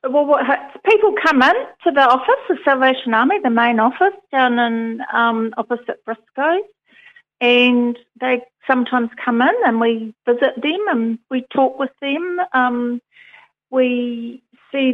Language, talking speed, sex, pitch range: English, 145 wpm, female, 220-255 Hz